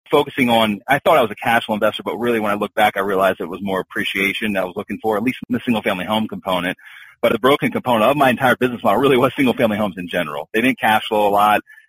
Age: 30-49